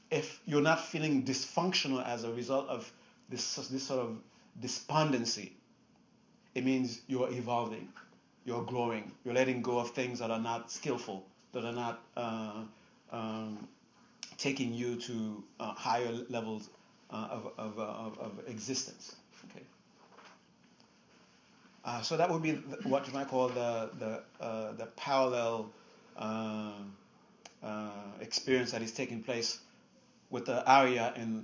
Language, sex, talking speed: English, male, 140 wpm